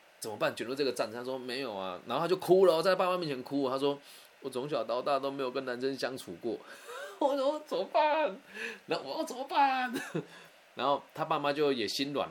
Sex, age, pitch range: male, 20-39, 105-155 Hz